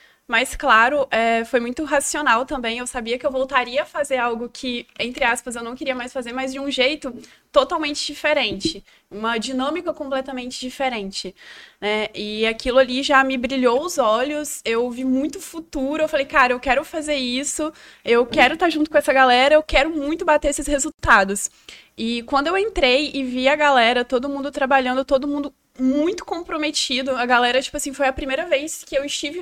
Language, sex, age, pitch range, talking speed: Portuguese, female, 20-39, 255-300 Hz, 185 wpm